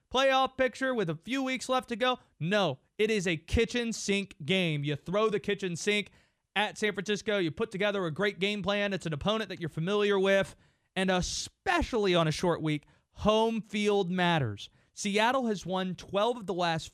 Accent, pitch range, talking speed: American, 165-255 Hz, 190 wpm